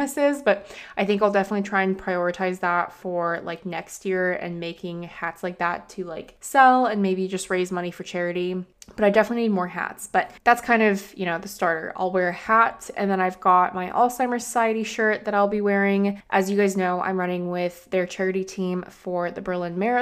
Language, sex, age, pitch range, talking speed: English, female, 20-39, 180-215 Hz, 215 wpm